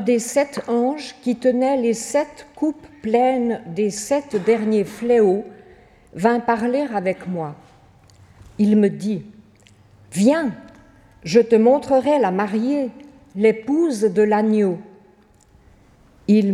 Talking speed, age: 110 wpm, 50-69